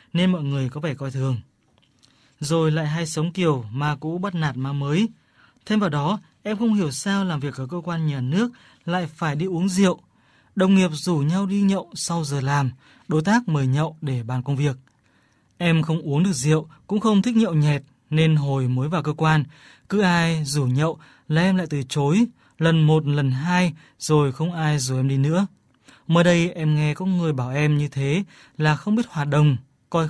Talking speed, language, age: 210 wpm, Vietnamese, 20-39